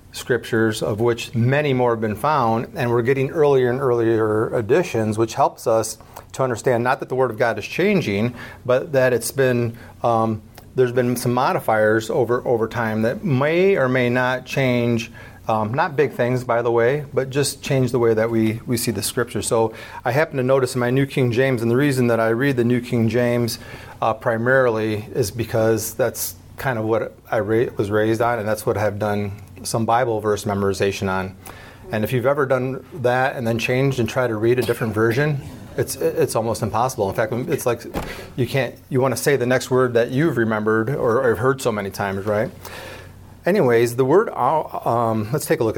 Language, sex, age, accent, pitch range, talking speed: English, male, 30-49, American, 110-130 Hz, 210 wpm